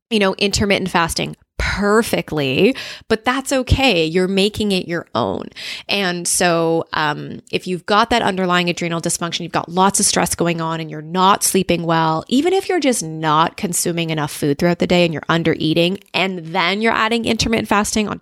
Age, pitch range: 20-39, 170-220 Hz